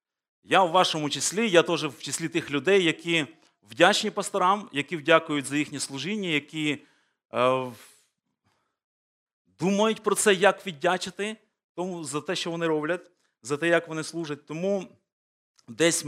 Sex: male